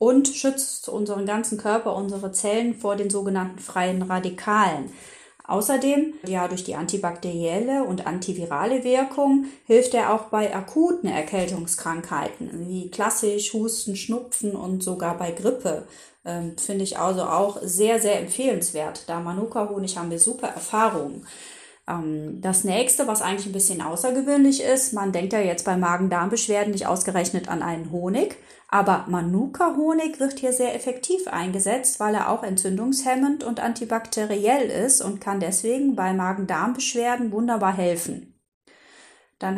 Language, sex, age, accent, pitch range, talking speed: German, female, 30-49, German, 185-245 Hz, 135 wpm